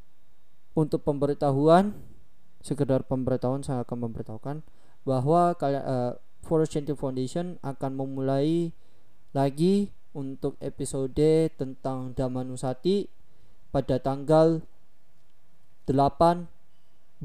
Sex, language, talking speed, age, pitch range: male, Indonesian, 80 wpm, 20-39, 120-150 Hz